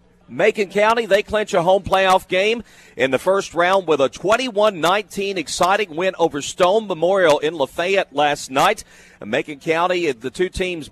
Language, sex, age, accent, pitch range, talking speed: English, male, 40-59, American, 155-195 Hz, 160 wpm